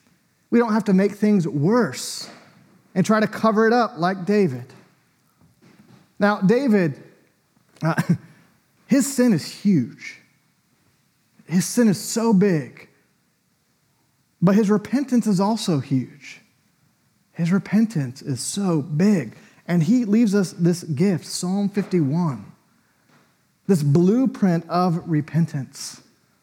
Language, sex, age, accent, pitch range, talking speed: English, male, 30-49, American, 155-210 Hz, 115 wpm